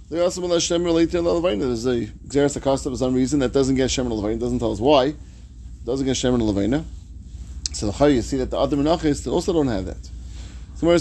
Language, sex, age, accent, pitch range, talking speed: English, male, 30-49, American, 105-160 Hz, 180 wpm